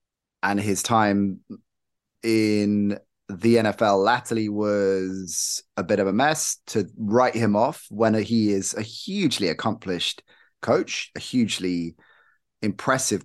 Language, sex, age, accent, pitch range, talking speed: English, male, 30-49, British, 100-115 Hz, 120 wpm